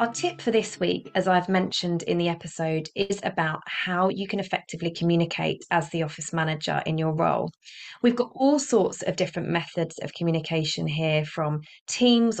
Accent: British